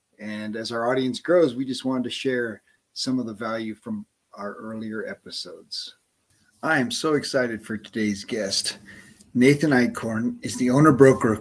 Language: English